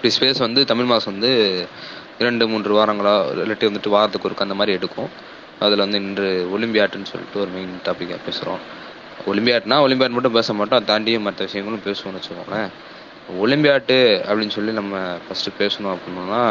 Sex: male